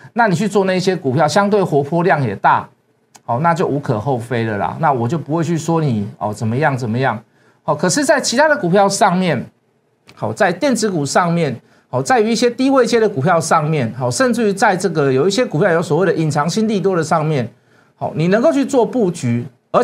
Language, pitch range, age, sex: Chinese, 135-205 Hz, 50-69, male